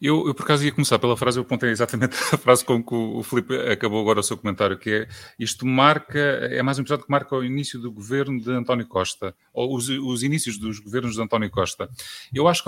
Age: 30-49